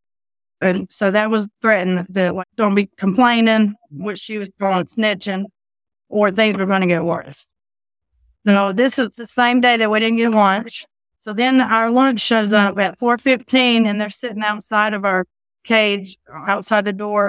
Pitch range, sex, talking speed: 190-225 Hz, female, 175 wpm